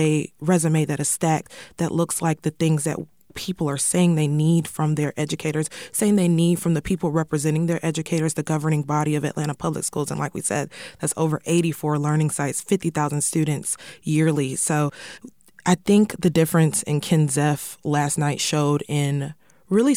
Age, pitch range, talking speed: 20-39, 145-170 Hz, 175 wpm